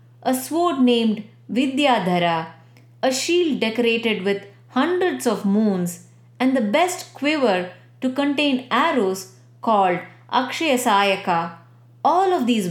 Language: English